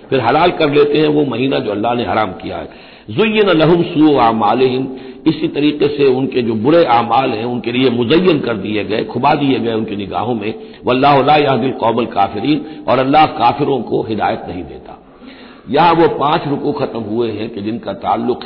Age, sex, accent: 60-79, male, native